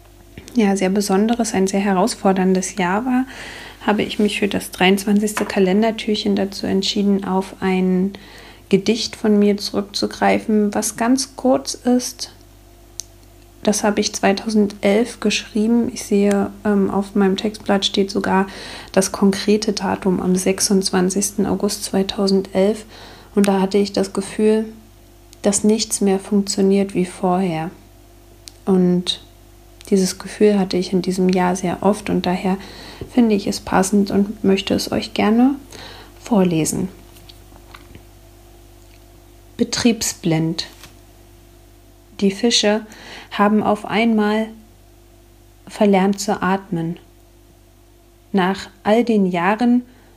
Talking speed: 110 wpm